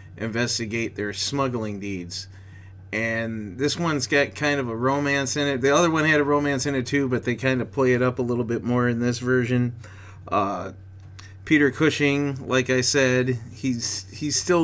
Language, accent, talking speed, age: English, American, 190 wpm, 30-49